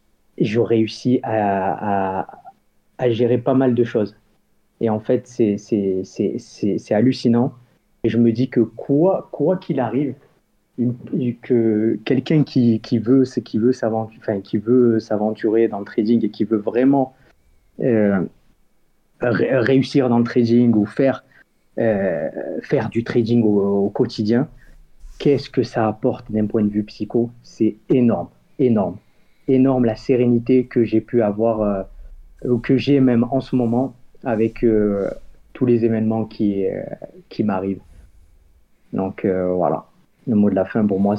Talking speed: 160 wpm